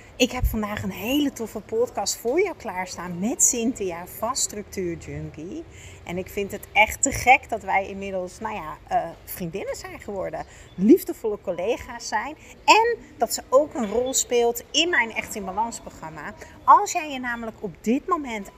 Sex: female